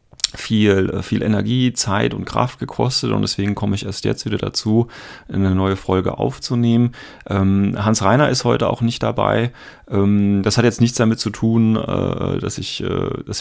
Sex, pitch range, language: male, 95-110 Hz, German